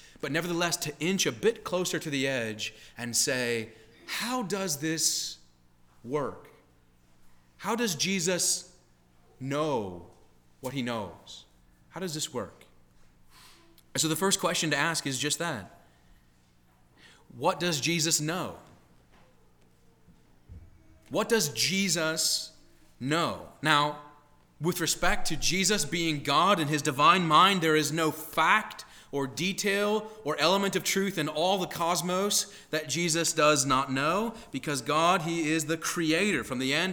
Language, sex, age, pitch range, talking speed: English, male, 30-49, 120-180 Hz, 135 wpm